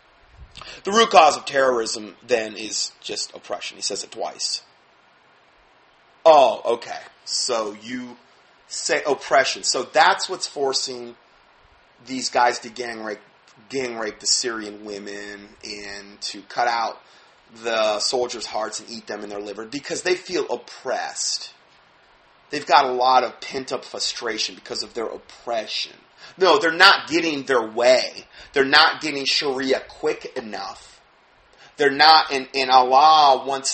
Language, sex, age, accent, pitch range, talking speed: English, male, 30-49, American, 110-145 Hz, 135 wpm